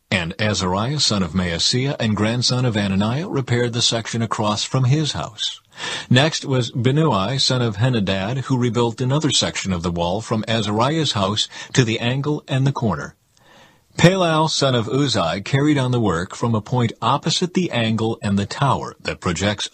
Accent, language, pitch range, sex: American, English, 100-135 Hz, male